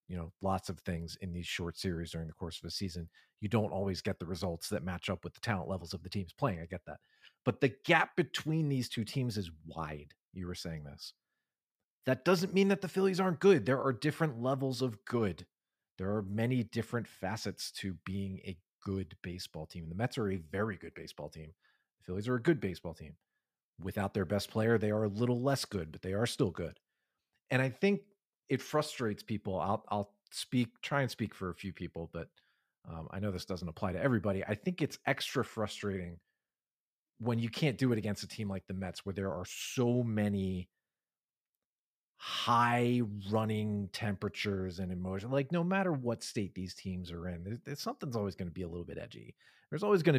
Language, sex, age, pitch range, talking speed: English, male, 40-59, 95-130 Hz, 210 wpm